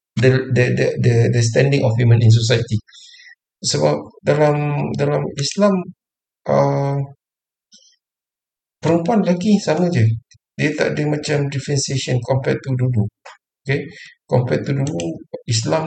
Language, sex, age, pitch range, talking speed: Malay, male, 50-69, 110-140 Hz, 120 wpm